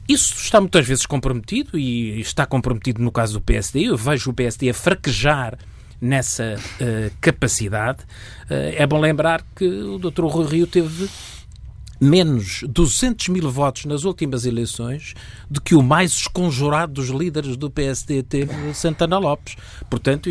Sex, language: male, Portuguese